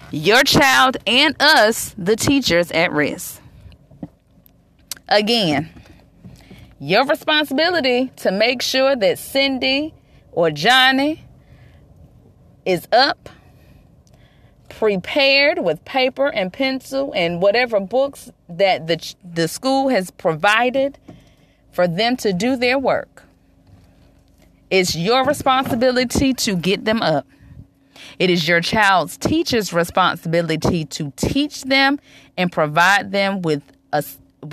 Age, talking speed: 30-49, 105 wpm